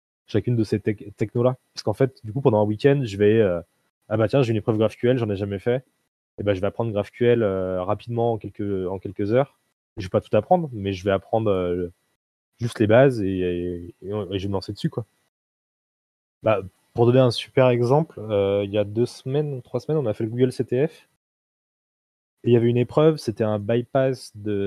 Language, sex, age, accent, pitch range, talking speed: French, male, 20-39, French, 100-120 Hz, 235 wpm